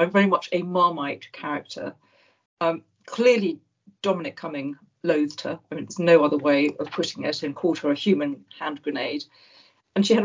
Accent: British